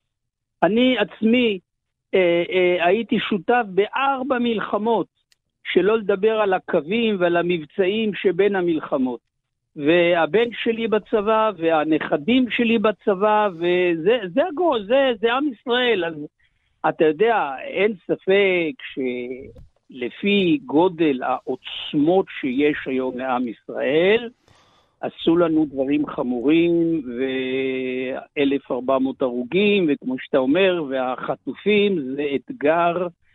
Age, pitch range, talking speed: 60-79, 145-215 Hz, 95 wpm